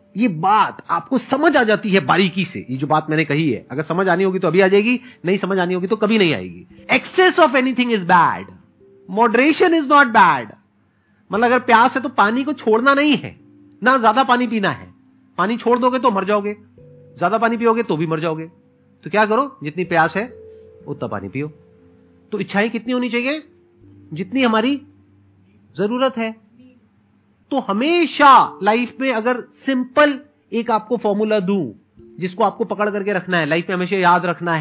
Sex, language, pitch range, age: male, Hindi, 165-235 Hz, 40-59